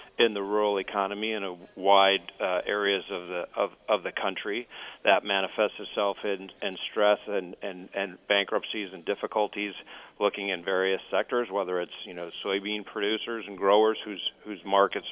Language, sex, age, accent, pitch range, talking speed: English, male, 40-59, American, 95-110 Hz, 170 wpm